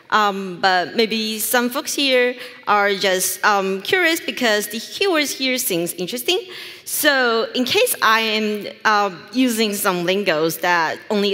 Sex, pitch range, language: female, 185-255 Hz, English